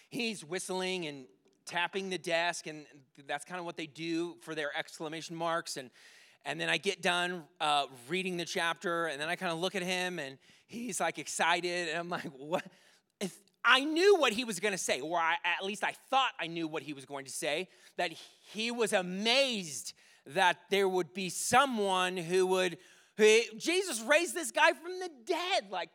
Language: English